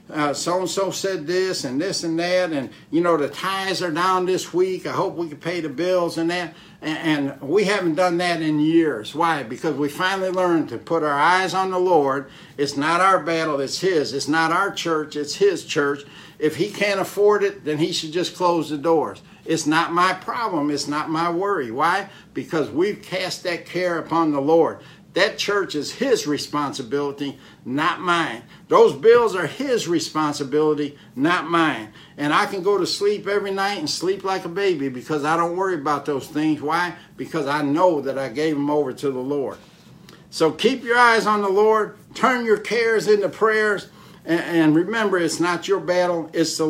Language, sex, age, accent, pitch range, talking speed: English, male, 60-79, American, 150-190 Hz, 200 wpm